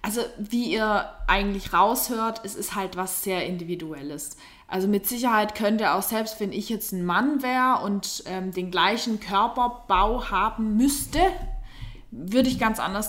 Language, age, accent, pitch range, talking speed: German, 20-39, German, 170-210 Hz, 160 wpm